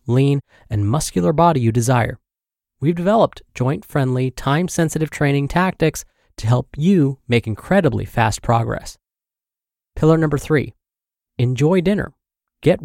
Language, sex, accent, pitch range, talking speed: English, male, American, 120-165 Hz, 115 wpm